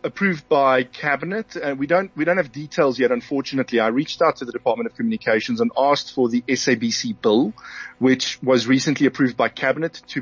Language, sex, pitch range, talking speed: English, male, 125-160 Hz, 200 wpm